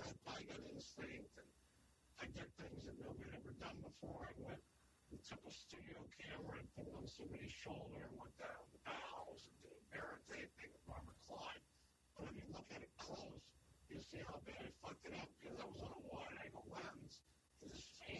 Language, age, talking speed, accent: English, 50-69, 200 wpm, American